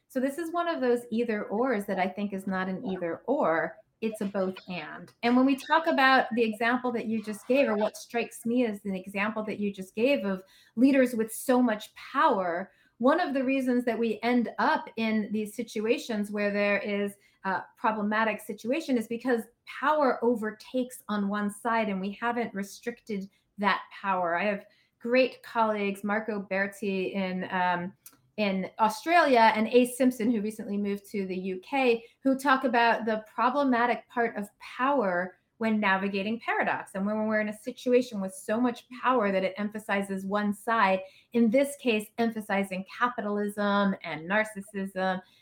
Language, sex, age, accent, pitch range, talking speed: English, female, 30-49, American, 200-245 Hz, 170 wpm